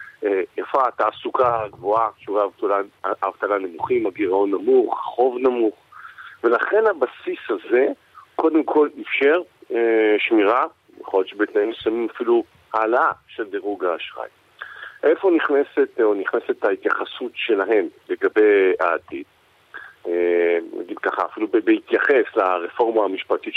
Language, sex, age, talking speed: Hebrew, male, 40-59, 95 wpm